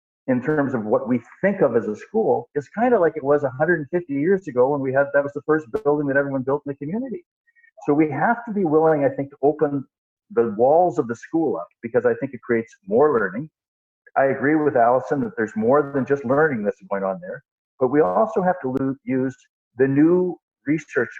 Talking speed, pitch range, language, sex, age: 225 wpm, 125-200 Hz, English, male, 50-69